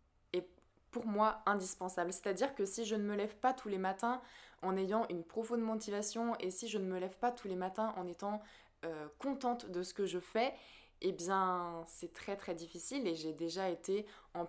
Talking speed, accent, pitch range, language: 205 wpm, French, 180-225 Hz, French